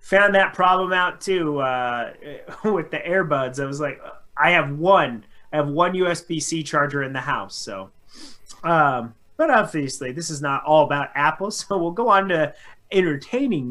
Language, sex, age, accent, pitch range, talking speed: English, male, 30-49, American, 140-175 Hz, 170 wpm